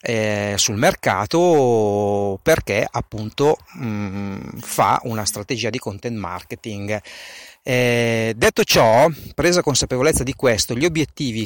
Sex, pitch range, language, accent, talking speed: male, 110-140 Hz, Italian, native, 95 wpm